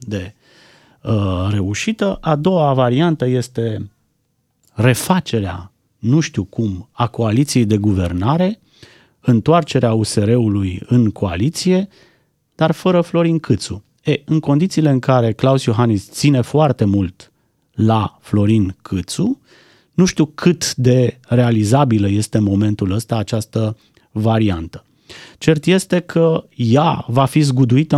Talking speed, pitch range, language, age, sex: 115 wpm, 105-145 Hz, Romanian, 30-49, male